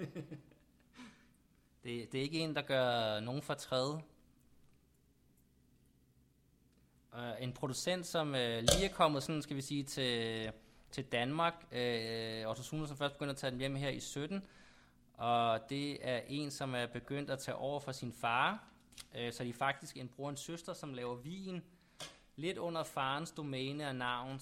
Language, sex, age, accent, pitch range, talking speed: Danish, male, 20-39, native, 120-150 Hz, 155 wpm